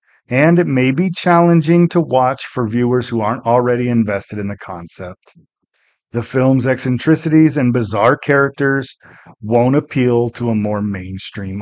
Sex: male